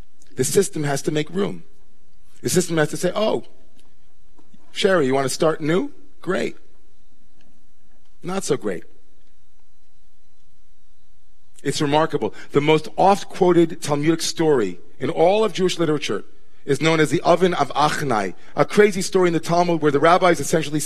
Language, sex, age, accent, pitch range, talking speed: English, male, 40-59, American, 150-185 Hz, 145 wpm